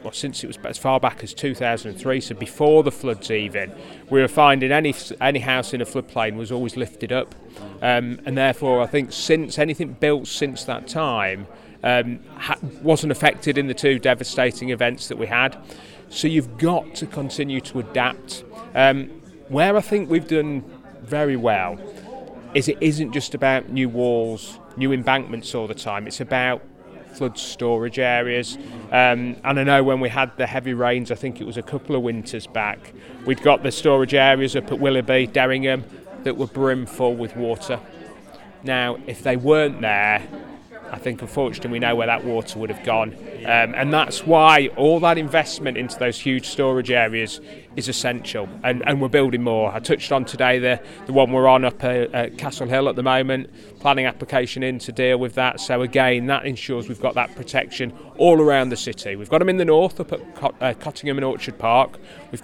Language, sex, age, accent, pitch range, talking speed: English, male, 30-49, British, 120-140 Hz, 195 wpm